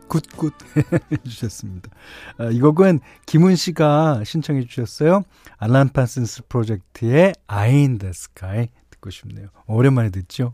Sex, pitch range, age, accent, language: male, 110-160 Hz, 40-59, native, Korean